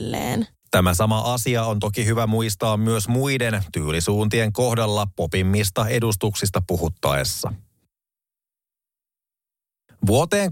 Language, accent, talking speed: Finnish, native, 85 wpm